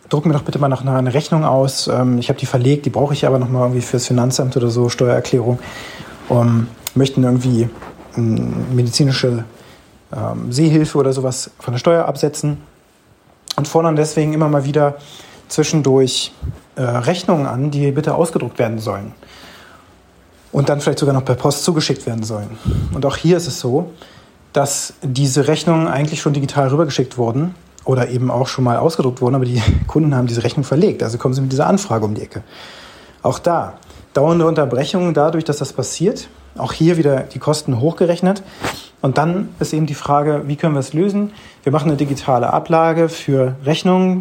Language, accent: German, German